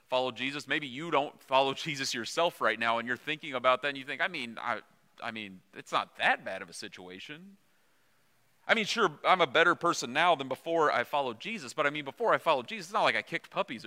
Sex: male